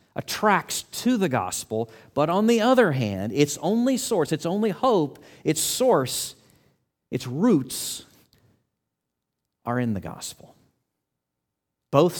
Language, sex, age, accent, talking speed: English, male, 40-59, American, 120 wpm